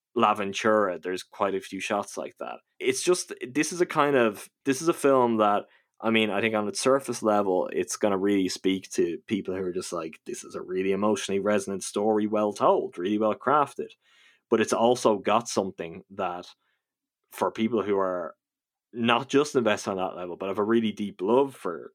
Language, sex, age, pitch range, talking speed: English, male, 20-39, 95-115 Hz, 205 wpm